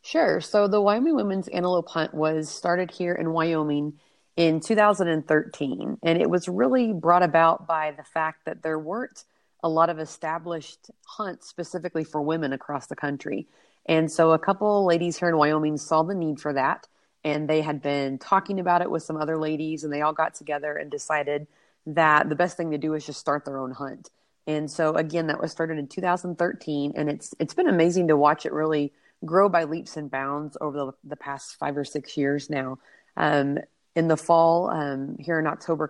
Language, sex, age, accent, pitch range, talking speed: English, female, 30-49, American, 145-175 Hz, 200 wpm